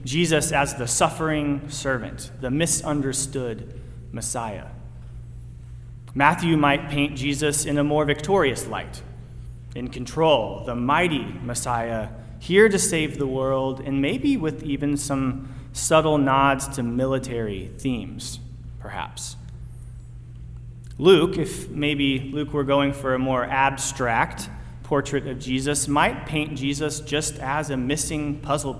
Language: English